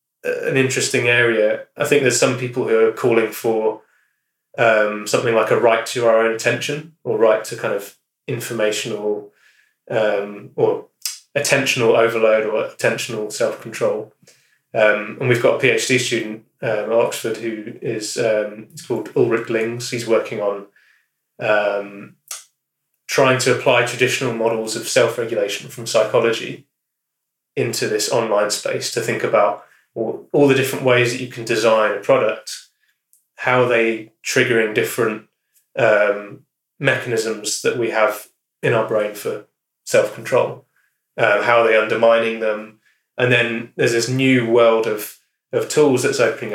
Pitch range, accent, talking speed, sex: 110-130 Hz, British, 145 wpm, male